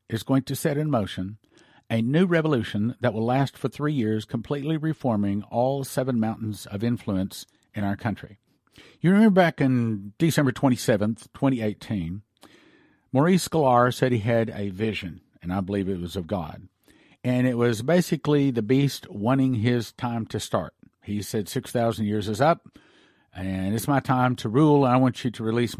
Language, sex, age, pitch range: English, male, 50-69, 105-140 Hz